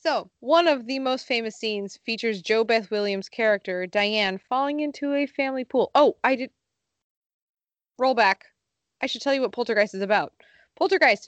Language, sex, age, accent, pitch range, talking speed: English, female, 20-39, American, 190-230 Hz, 165 wpm